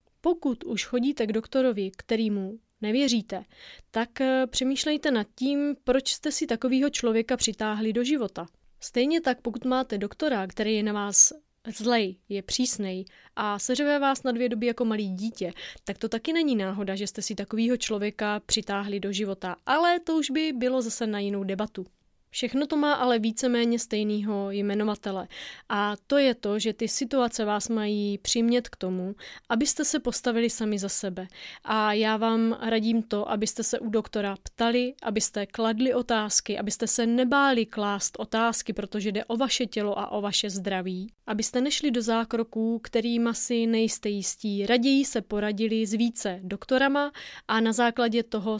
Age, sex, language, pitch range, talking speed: 30-49, female, Czech, 210-250 Hz, 165 wpm